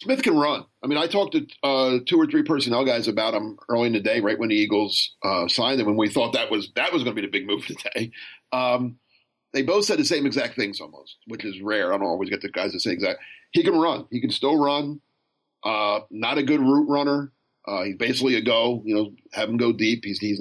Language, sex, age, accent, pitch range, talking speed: English, male, 50-69, American, 110-145 Hz, 260 wpm